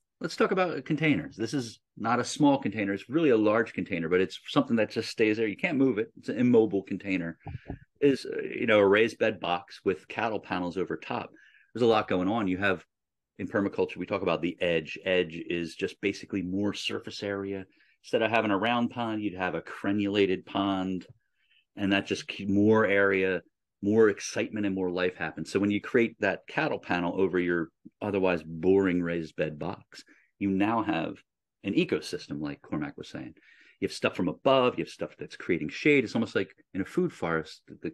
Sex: male